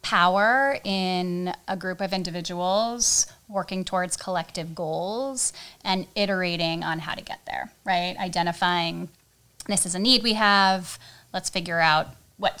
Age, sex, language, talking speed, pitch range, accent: 10-29, female, English, 140 wpm, 170-200 Hz, American